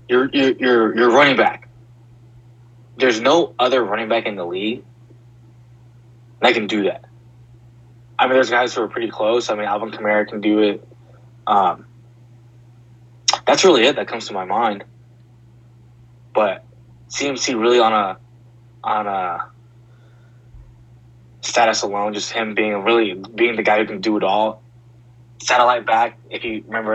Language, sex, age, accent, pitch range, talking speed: English, male, 20-39, American, 115-120 Hz, 150 wpm